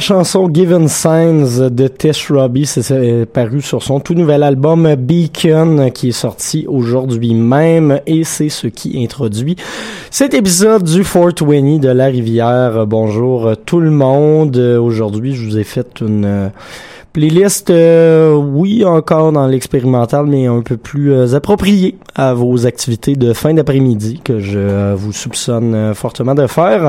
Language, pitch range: French, 120-155 Hz